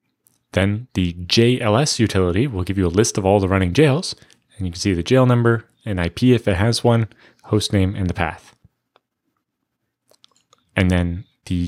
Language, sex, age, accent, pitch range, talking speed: English, male, 20-39, American, 95-115 Hz, 180 wpm